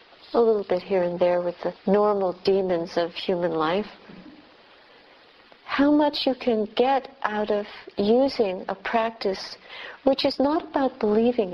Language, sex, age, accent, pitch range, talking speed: English, female, 60-79, American, 185-245 Hz, 145 wpm